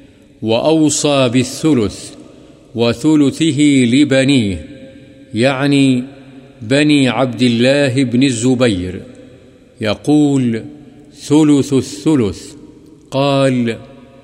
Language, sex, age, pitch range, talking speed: Urdu, male, 50-69, 125-145 Hz, 60 wpm